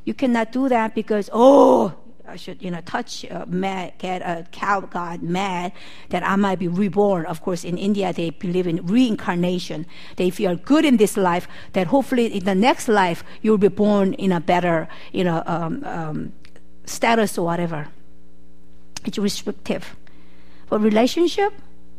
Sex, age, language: female, 50-69, Korean